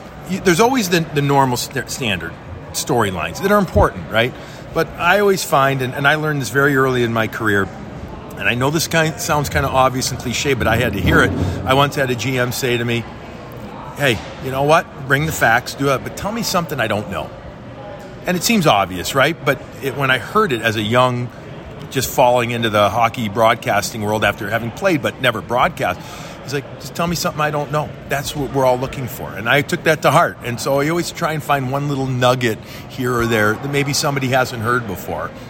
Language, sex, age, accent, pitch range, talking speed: English, male, 40-59, American, 120-150 Hz, 230 wpm